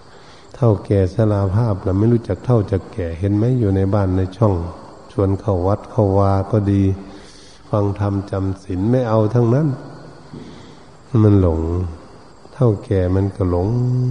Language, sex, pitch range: Thai, male, 90-110 Hz